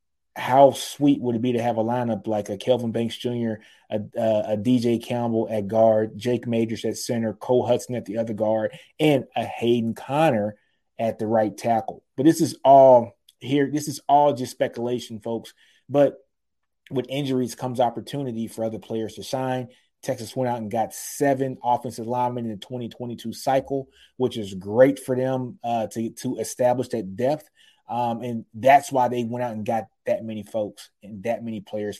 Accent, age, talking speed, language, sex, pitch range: American, 30-49, 185 wpm, English, male, 110-130 Hz